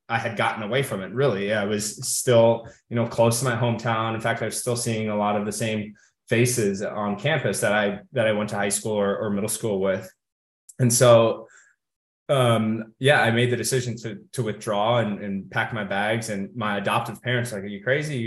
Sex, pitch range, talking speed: male, 105-115 Hz, 230 wpm